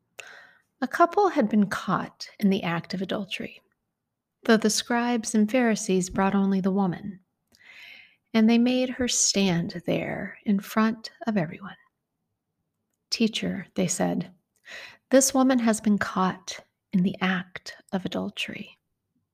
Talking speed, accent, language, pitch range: 130 wpm, American, English, 195-235 Hz